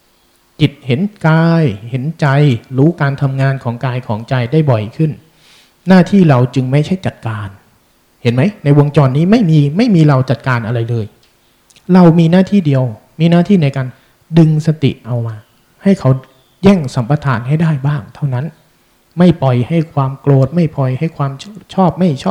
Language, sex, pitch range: Thai, male, 120-160 Hz